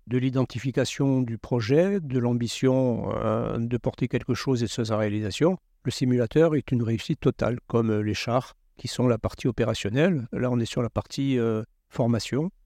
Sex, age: male, 50-69